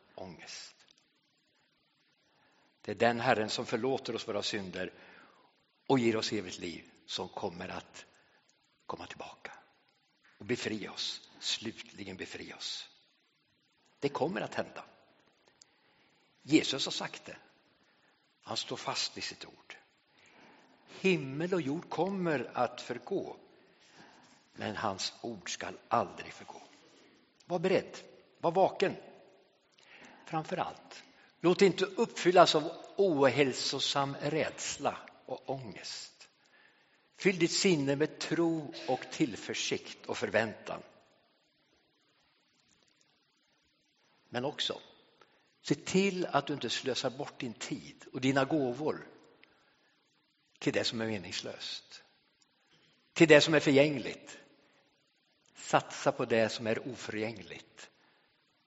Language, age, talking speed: English, 50-69, 105 wpm